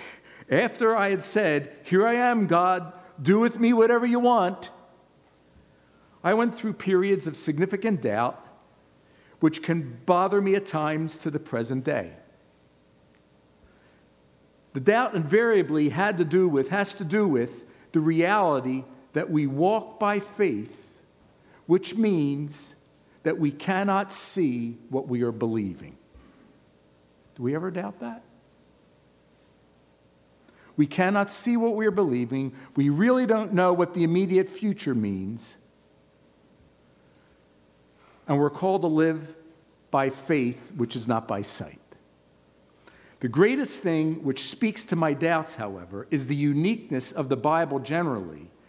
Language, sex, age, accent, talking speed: English, male, 50-69, American, 135 wpm